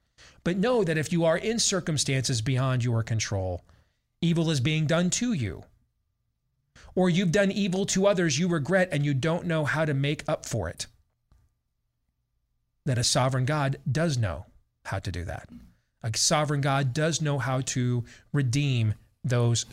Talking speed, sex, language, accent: 165 wpm, male, English, American